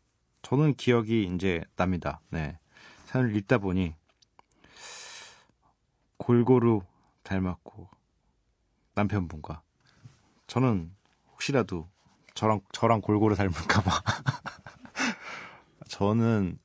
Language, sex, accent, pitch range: Korean, male, native, 85-110 Hz